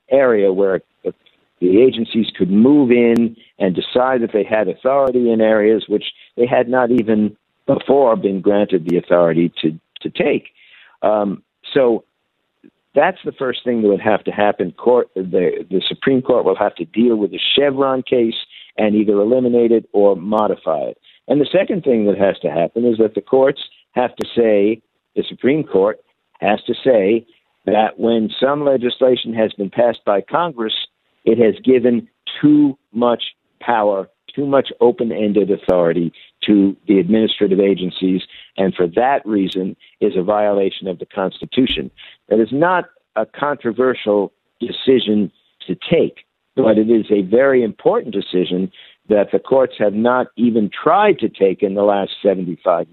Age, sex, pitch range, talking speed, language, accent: 60-79, male, 100-125 Hz, 160 wpm, English, American